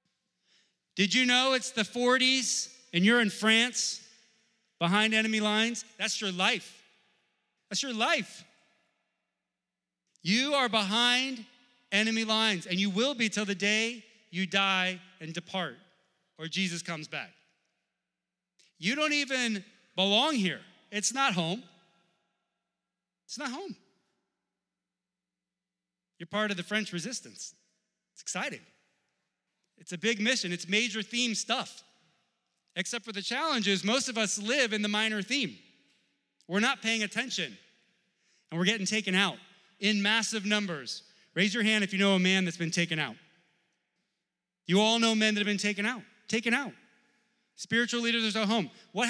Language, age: English, 30-49